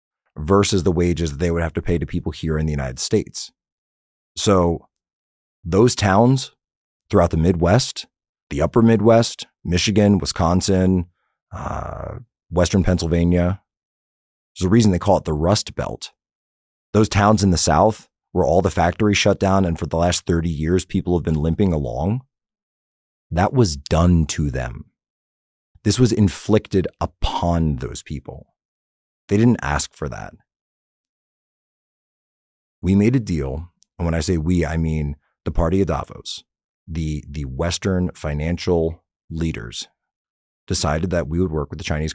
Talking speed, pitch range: 150 wpm, 75-95 Hz